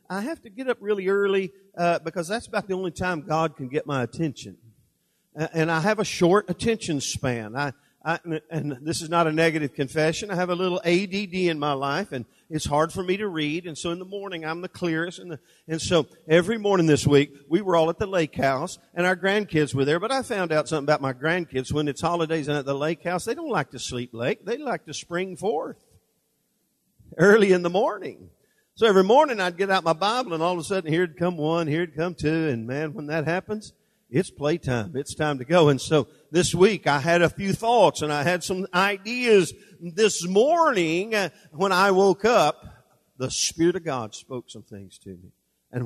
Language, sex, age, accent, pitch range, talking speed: English, male, 50-69, American, 145-185 Hz, 225 wpm